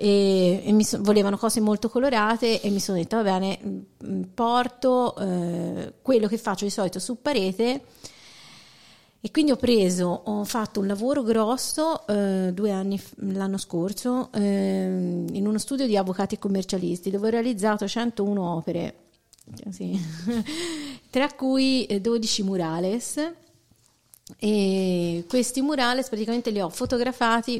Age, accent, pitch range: 40-59, native, 190-230 Hz